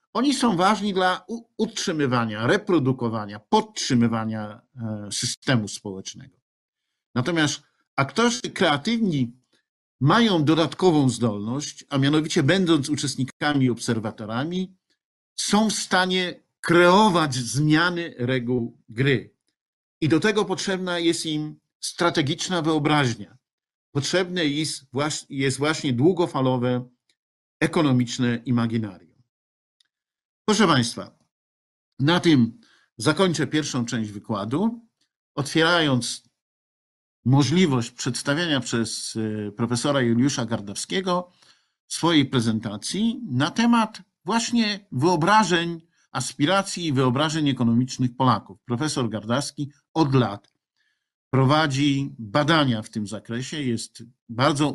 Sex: male